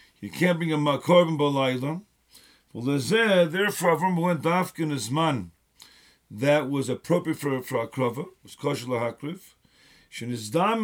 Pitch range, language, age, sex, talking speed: 145-180 Hz, English, 50-69, male, 140 wpm